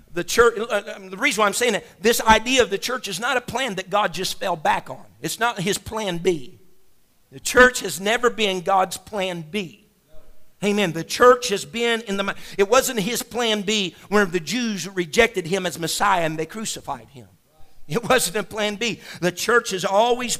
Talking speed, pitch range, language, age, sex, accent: 205 wpm, 200-255 Hz, English, 50-69, male, American